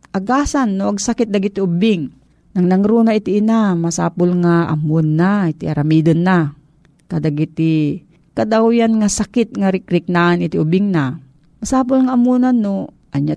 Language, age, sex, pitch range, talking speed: Filipino, 40-59, female, 165-210 Hz, 145 wpm